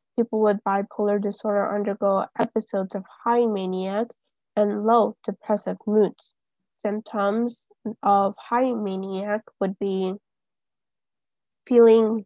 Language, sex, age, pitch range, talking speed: English, female, 10-29, 205-235 Hz, 100 wpm